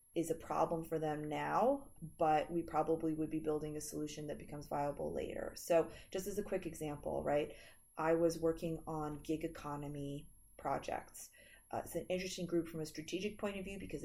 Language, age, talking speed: English, 30-49, 190 wpm